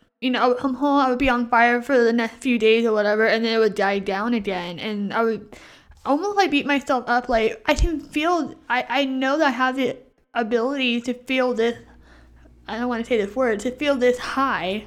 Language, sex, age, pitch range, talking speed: English, female, 10-29, 225-270 Hz, 240 wpm